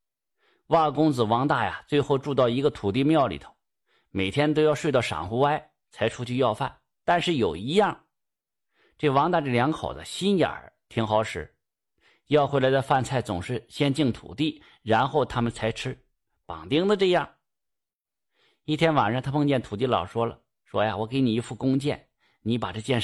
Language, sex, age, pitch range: Chinese, male, 50-69, 115-155 Hz